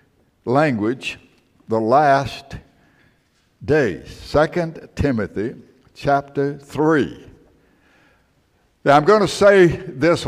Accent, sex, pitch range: American, male, 115-140 Hz